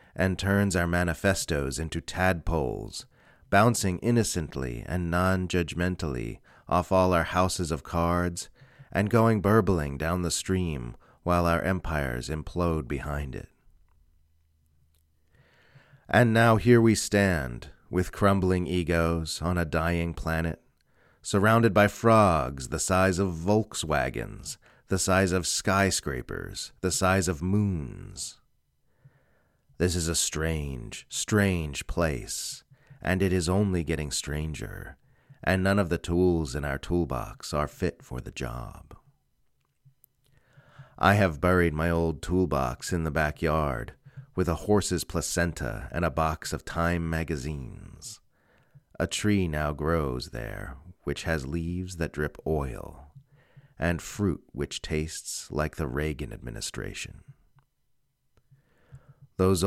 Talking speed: 120 wpm